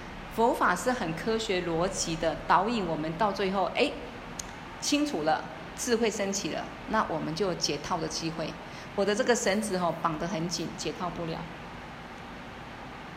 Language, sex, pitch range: Chinese, female, 180-245 Hz